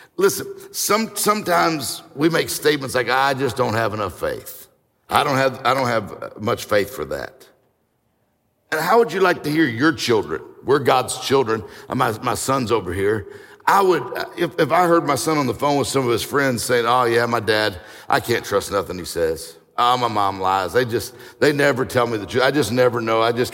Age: 60-79